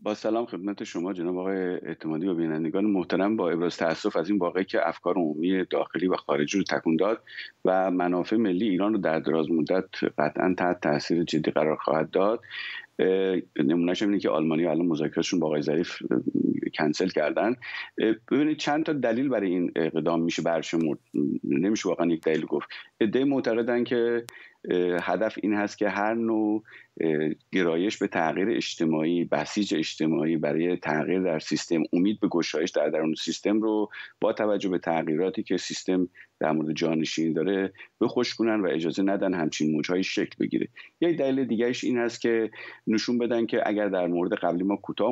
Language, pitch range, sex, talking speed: Persian, 80-115 Hz, male, 160 wpm